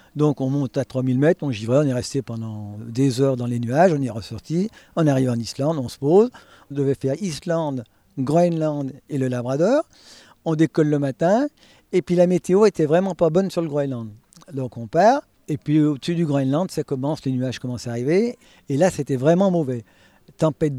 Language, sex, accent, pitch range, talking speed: French, male, French, 130-170 Hz, 205 wpm